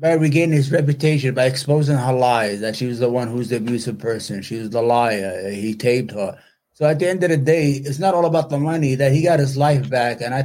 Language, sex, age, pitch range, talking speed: English, male, 30-49, 130-160 Hz, 260 wpm